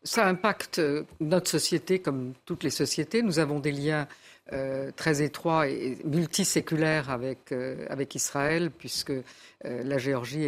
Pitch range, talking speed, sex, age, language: 130-155 Hz, 145 wpm, female, 50-69, French